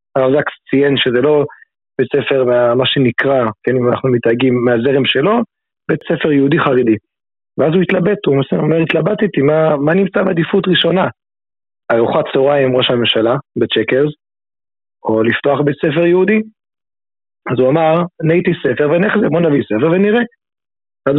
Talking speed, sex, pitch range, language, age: 150 wpm, male, 125-160 Hz, Hebrew, 30-49